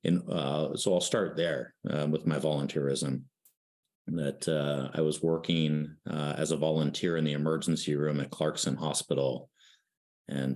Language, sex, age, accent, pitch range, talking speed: English, male, 30-49, American, 70-75 Hz, 150 wpm